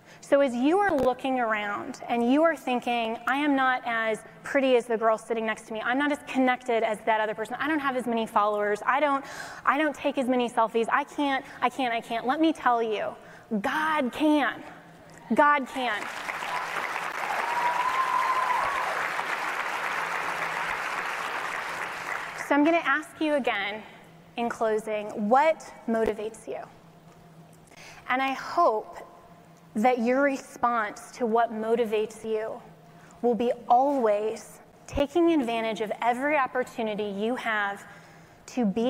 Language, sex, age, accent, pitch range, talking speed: English, female, 20-39, American, 220-270 Hz, 140 wpm